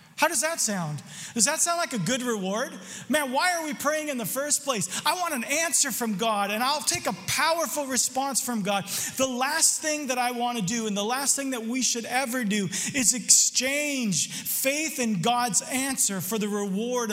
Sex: male